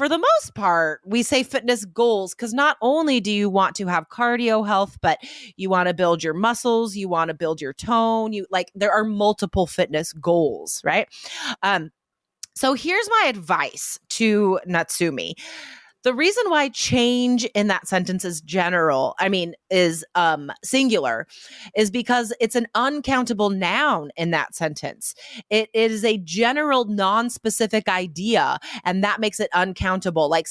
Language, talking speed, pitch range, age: English, 160 wpm, 185-245 Hz, 30-49